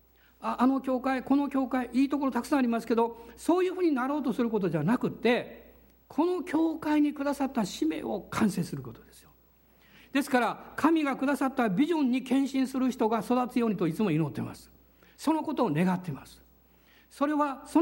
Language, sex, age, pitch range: Japanese, male, 60-79, 185-270 Hz